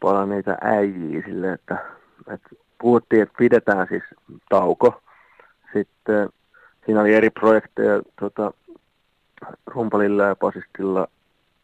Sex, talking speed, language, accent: male, 105 wpm, Finnish, native